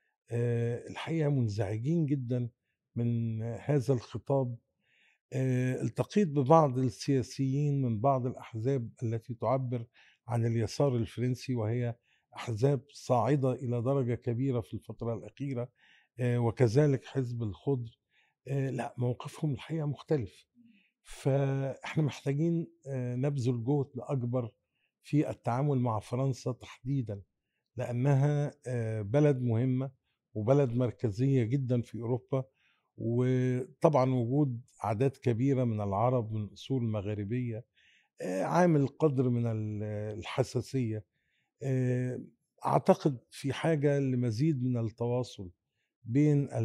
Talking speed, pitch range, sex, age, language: 90 wpm, 115-140 Hz, male, 50-69, Arabic